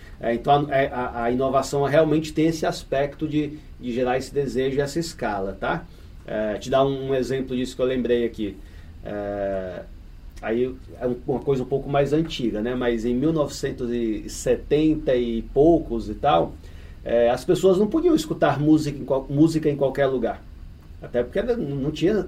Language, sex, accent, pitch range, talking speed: Portuguese, male, Brazilian, 120-150 Hz, 165 wpm